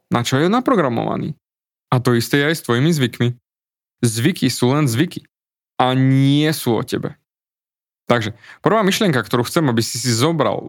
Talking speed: 165 wpm